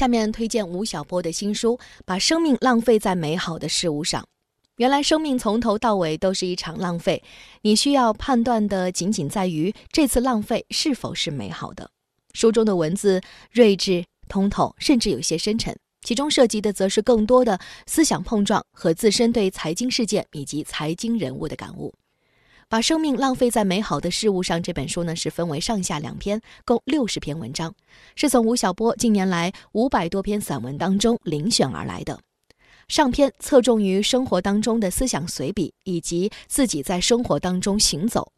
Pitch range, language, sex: 175-235 Hz, Chinese, female